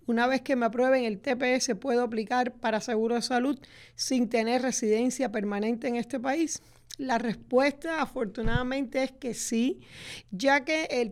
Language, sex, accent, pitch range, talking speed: Spanish, female, American, 230-275 Hz, 155 wpm